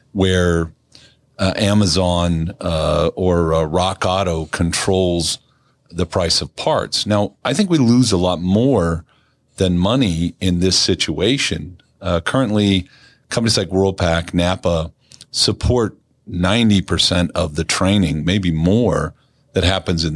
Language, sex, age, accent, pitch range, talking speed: English, male, 40-59, American, 85-105 Hz, 125 wpm